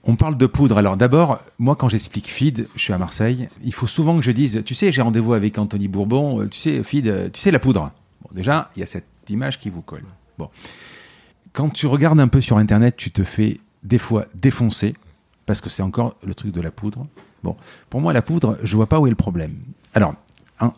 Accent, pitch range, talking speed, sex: French, 100-125 Hz, 235 wpm, male